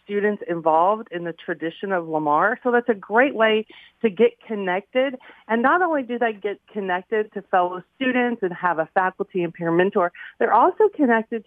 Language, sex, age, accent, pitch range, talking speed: English, female, 40-59, American, 180-230 Hz, 185 wpm